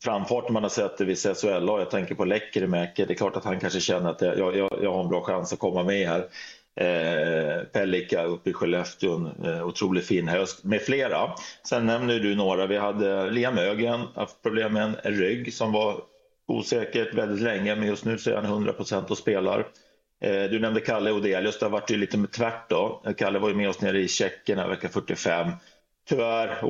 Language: Swedish